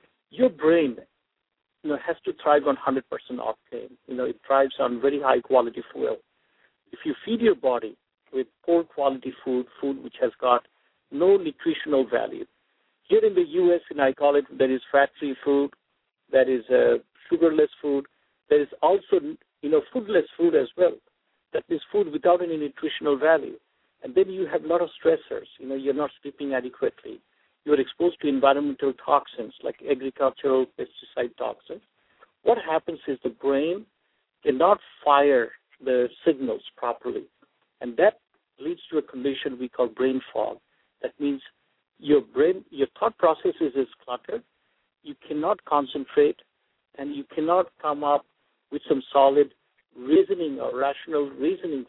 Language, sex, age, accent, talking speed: English, male, 50-69, Indian, 155 wpm